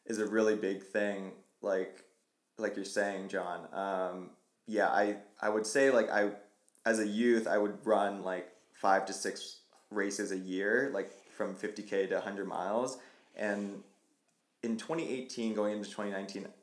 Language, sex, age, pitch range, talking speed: English, male, 20-39, 95-110 Hz, 155 wpm